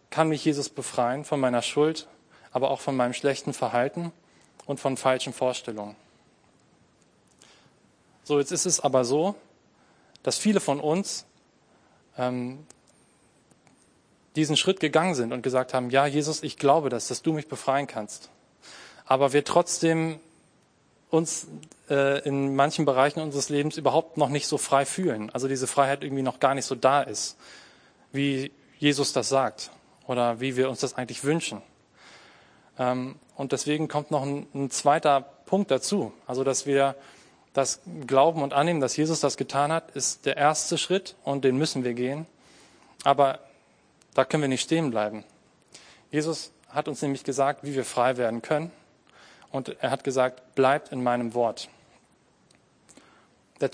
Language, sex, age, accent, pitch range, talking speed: German, male, 20-39, German, 130-150 Hz, 155 wpm